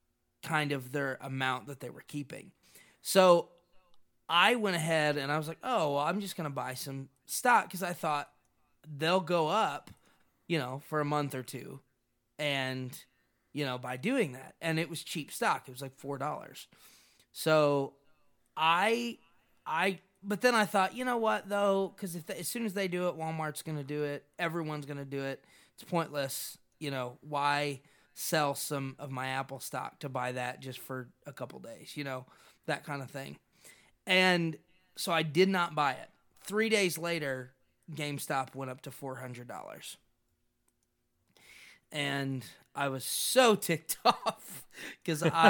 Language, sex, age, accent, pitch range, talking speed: English, male, 20-39, American, 130-175 Hz, 170 wpm